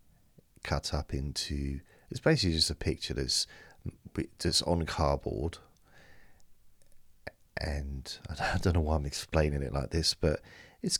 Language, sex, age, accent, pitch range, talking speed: English, male, 40-59, British, 75-90 Hz, 125 wpm